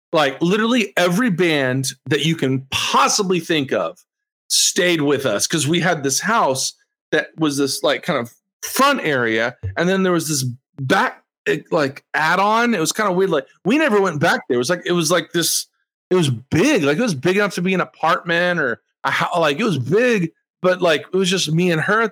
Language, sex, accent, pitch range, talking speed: English, male, American, 150-200 Hz, 220 wpm